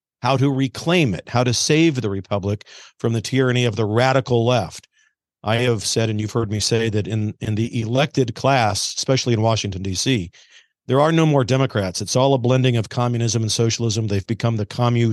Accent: American